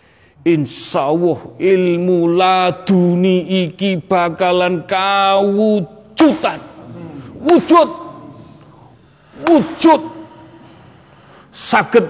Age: 40-59